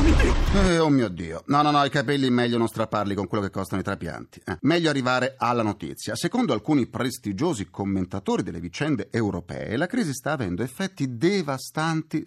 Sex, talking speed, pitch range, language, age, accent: male, 175 wpm, 95-150 Hz, Italian, 30-49, native